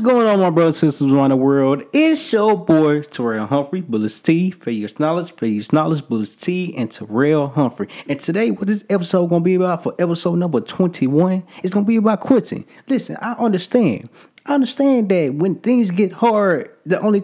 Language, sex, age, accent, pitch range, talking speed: English, male, 20-39, American, 140-210 Hz, 200 wpm